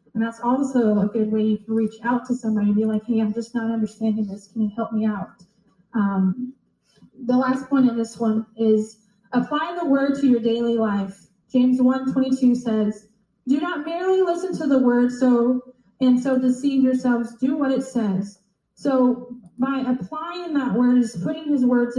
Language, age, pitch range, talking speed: English, 20-39, 215-255 Hz, 185 wpm